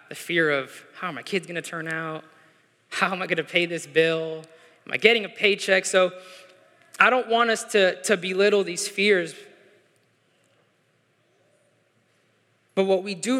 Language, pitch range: English, 160-200 Hz